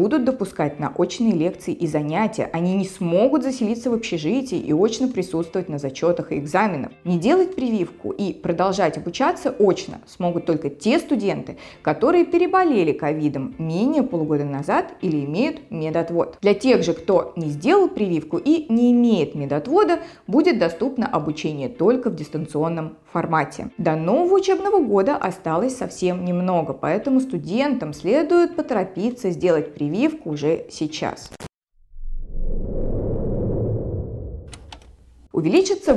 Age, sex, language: 20-39, female, Russian